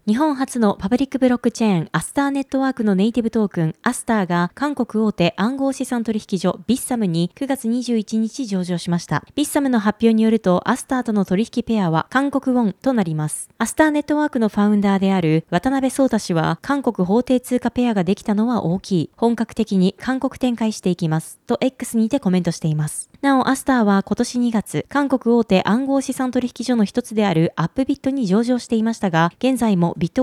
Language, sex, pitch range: Japanese, female, 190-255 Hz